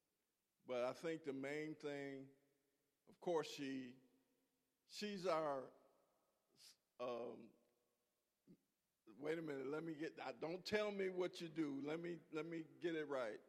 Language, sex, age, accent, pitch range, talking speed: English, male, 50-69, American, 135-180 Hz, 140 wpm